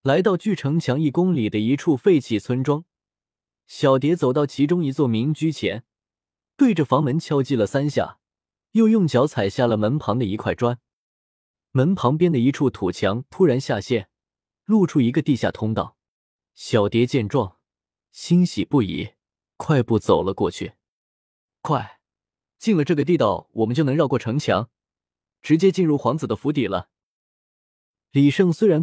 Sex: male